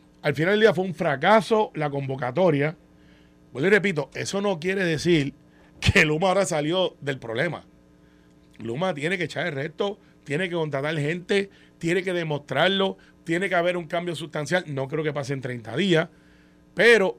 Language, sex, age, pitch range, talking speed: Spanish, male, 30-49, 135-185 Hz, 170 wpm